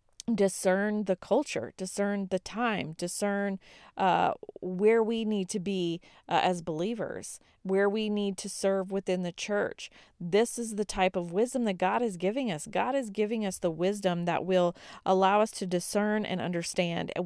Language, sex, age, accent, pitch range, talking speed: English, female, 40-59, American, 180-210 Hz, 175 wpm